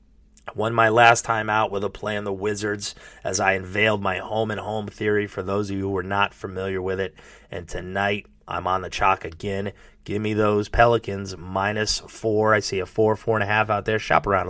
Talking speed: 205 wpm